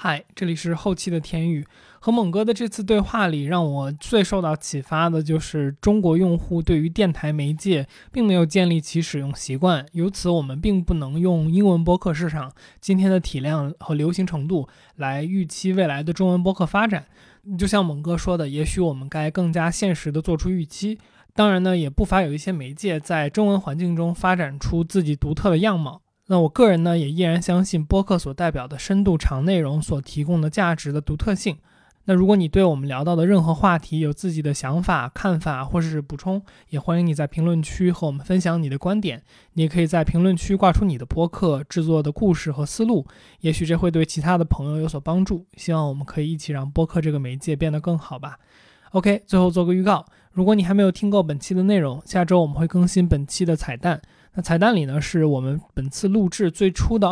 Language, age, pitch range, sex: Chinese, 20-39, 155-190 Hz, male